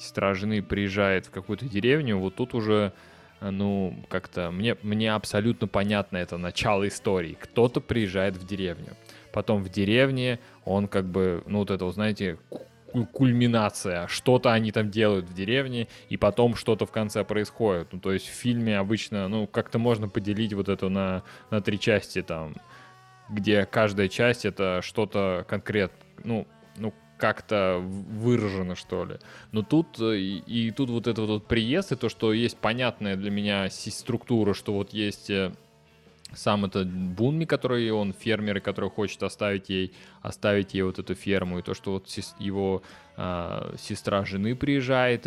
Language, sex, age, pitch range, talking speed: Russian, male, 20-39, 95-115 Hz, 155 wpm